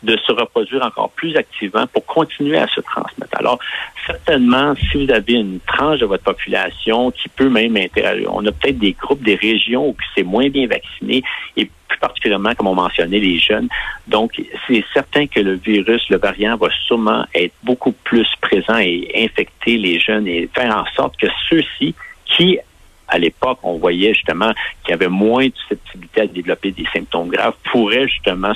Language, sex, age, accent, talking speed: French, male, 60-79, French, 185 wpm